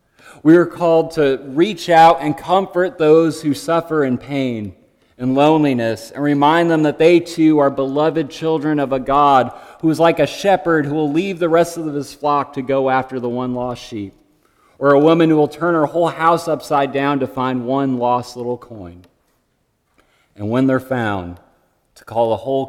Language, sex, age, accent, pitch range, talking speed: English, male, 30-49, American, 110-150 Hz, 190 wpm